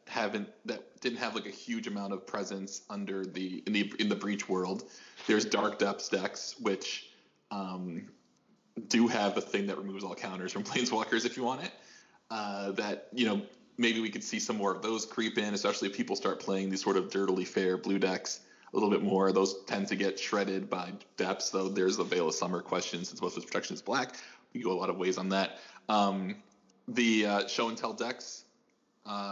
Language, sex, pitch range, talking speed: English, male, 95-110 Hz, 215 wpm